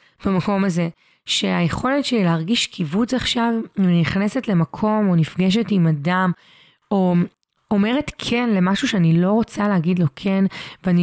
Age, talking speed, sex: 20-39, 130 wpm, female